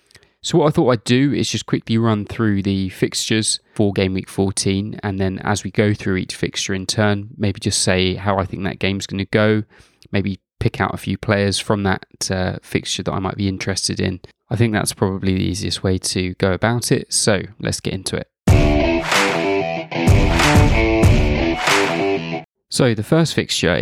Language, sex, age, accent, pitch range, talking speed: English, male, 20-39, British, 95-110 Hz, 185 wpm